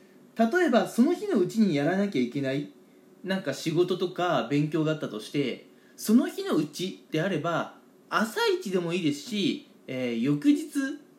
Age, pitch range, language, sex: 20-39, 150-245 Hz, Japanese, male